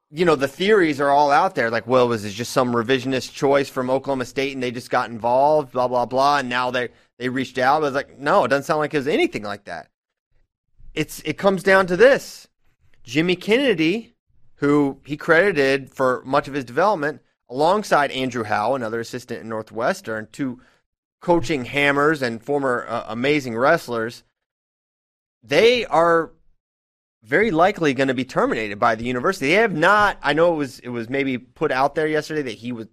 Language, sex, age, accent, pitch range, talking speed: English, male, 30-49, American, 125-160 Hz, 190 wpm